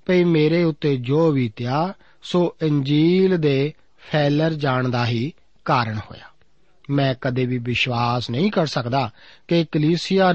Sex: male